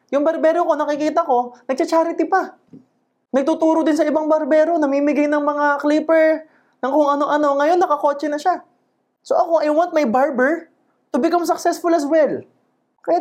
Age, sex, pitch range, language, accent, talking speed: 20-39, male, 170-285 Hz, Filipino, native, 160 wpm